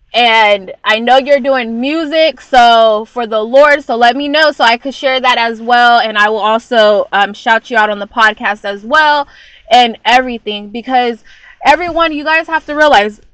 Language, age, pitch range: English, 20-39, 215-280 Hz